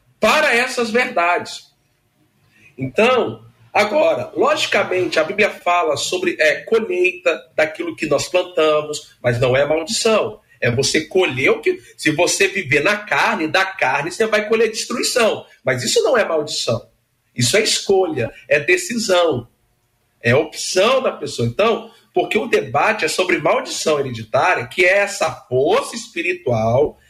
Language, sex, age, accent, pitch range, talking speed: Portuguese, male, 50-69, Brazilian, 150-235 Hz, 140 wpm